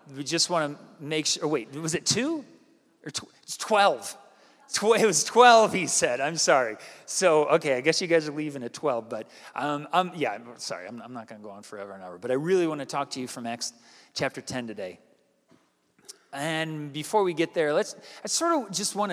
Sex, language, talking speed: male, English, 225 wpm